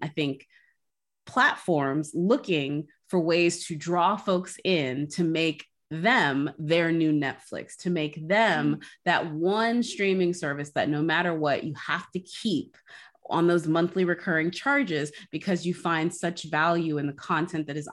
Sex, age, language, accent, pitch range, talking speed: female, 30-49, English, American, 155-210 Hz, 155 wpm